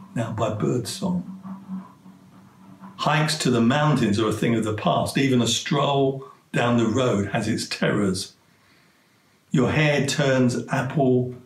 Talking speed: 135 wpm